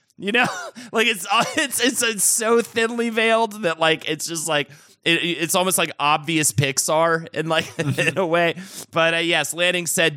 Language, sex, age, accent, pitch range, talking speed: English, male, 30-49, American, 125-175 Hz, 175 wpm